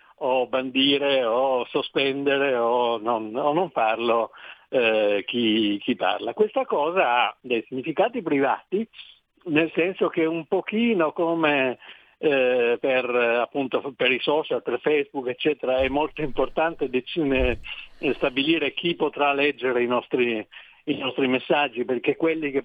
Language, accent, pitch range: Italian, native, 120-155 Hz